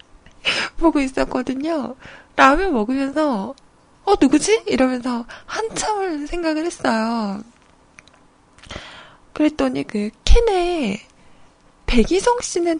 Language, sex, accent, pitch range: Korean, female, native, 225-345 Hz